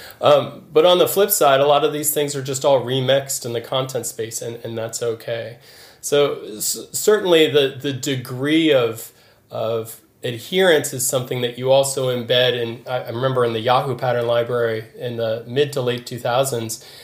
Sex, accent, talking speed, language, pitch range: male, American, 185 wpm, English, 115-135 Hz